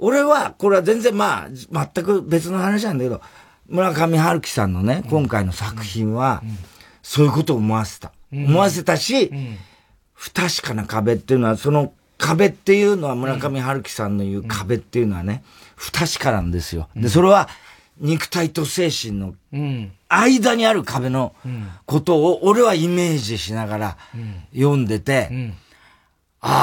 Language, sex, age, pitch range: Japanese, male, 40-59, 110-185 Hz